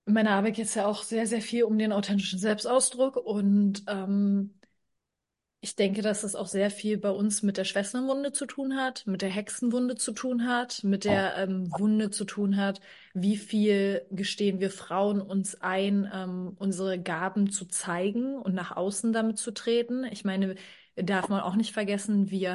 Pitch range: 195-220 Hz